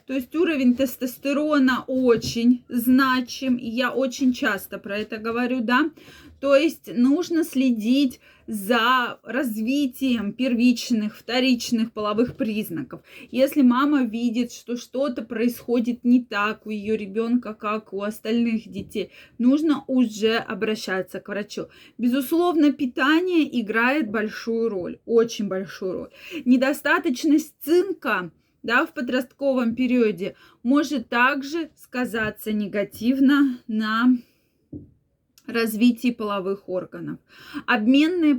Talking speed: 105 wpm